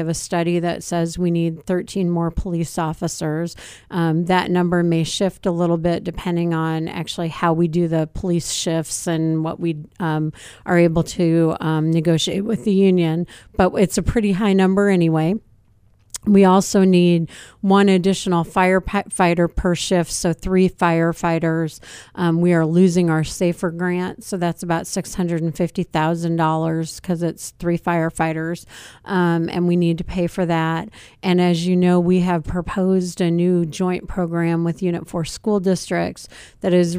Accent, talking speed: American, 160 wpm